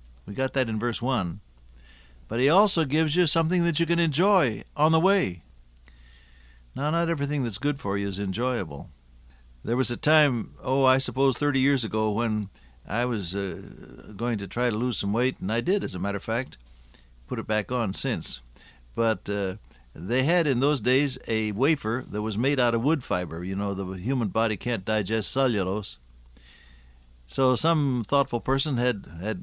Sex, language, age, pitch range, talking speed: male, English, 60-79, 80-135 Hz, 190 wpm